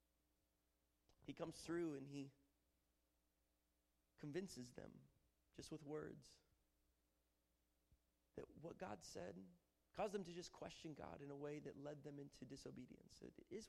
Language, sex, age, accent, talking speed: English, male, 30-49, American, 125 wpm